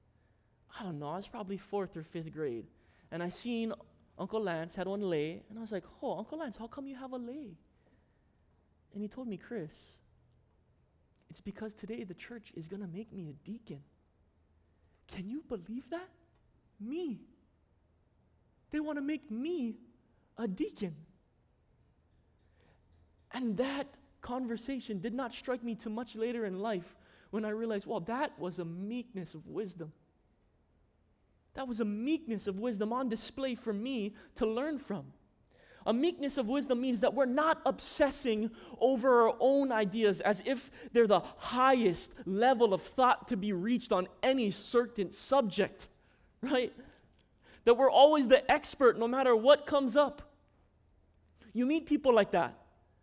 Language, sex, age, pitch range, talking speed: English, male, 20-39, 185-265 Hz, 155 wpm